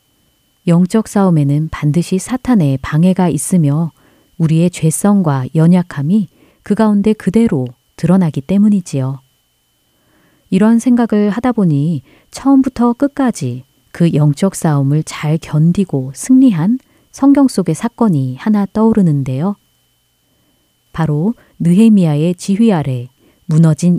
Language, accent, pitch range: Korean, native, 145-210 Hz